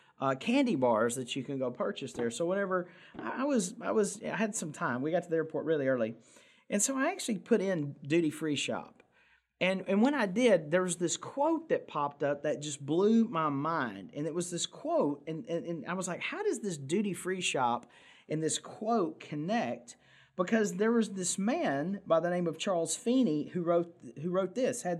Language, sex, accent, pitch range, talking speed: English, male, American, 155-230 Hz, 215 wpm